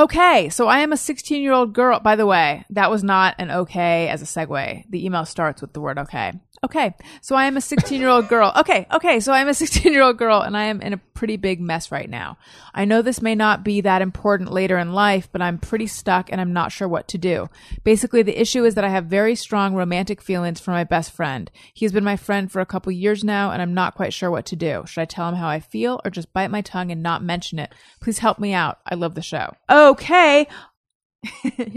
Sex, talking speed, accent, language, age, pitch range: female, 255 wpm, American, English, 30-49, 170-220 Hz